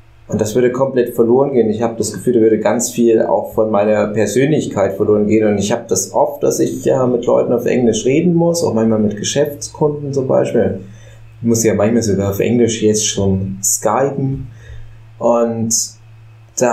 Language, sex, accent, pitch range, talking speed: German, male, German, 110-120 Hz, 185 wpm